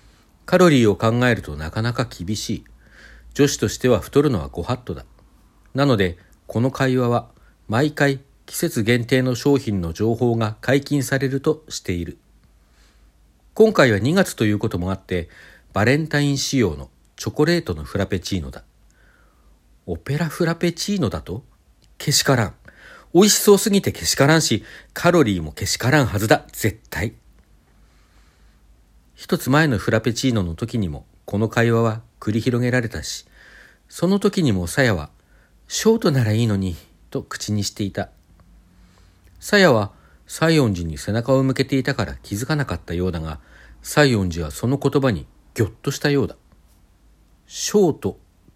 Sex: male